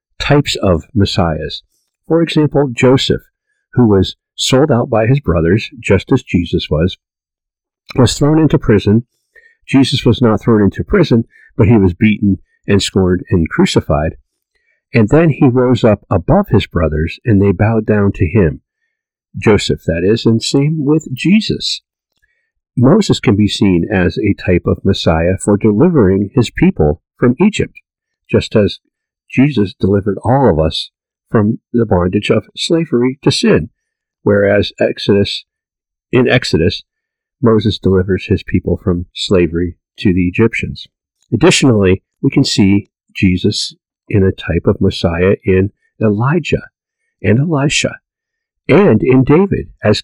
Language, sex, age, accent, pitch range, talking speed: English, male, 50-69, American, 95-135 Hz, 140 wpm